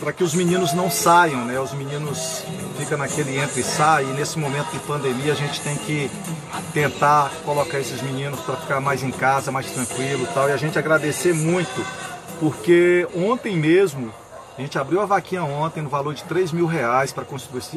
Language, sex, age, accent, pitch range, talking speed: Portuguese, male, 40-59, Brazilian, 135-165 Hz, 195 wpm